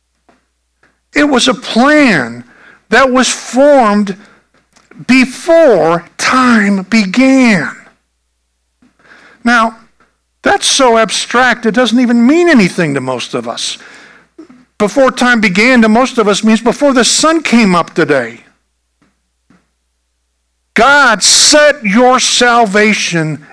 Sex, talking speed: male, 105 wpm